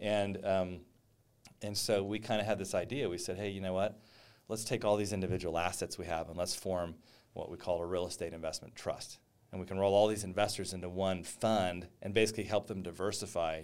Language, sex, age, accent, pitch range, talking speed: English, male, 40-59, American, 90-110 Hz, 220 wpm